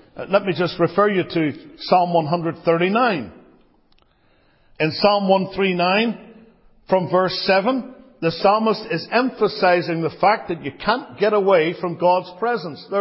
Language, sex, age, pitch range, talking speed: English, male, 50-69, 160-225 Hz, 135 wpm